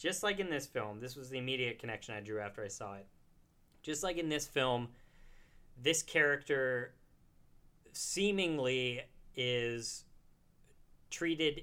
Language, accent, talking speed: English, American, 135 wpm